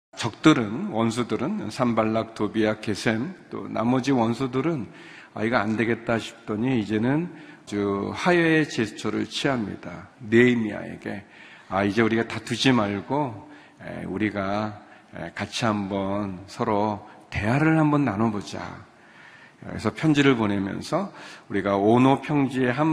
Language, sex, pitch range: Korean, male, 105-125 Hz